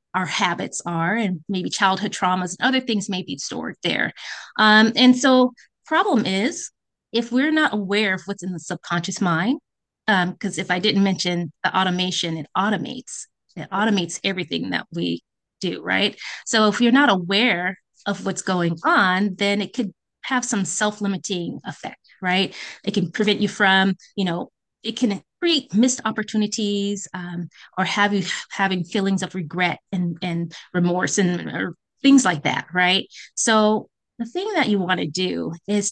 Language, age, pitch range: English, 20-39, 180-225 Hz